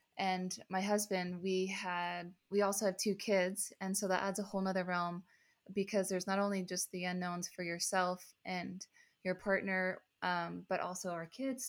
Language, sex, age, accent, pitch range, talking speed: English, female, 20-39, American, 175-195 Hz, 180 wpm